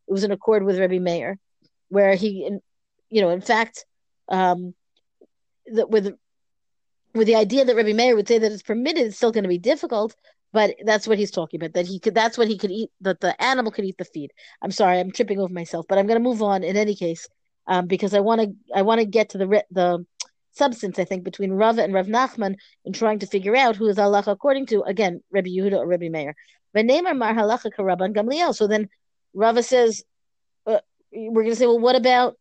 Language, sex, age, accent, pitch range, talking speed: English, female, 40-59, American, 195-245 Hz, 225 wpm